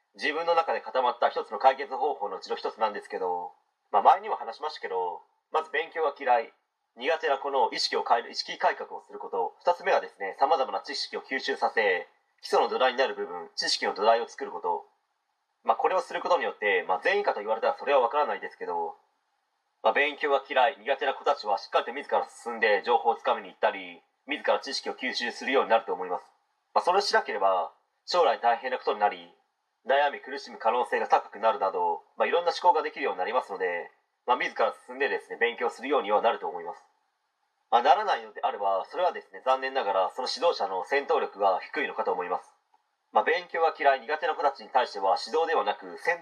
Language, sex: Japanese, male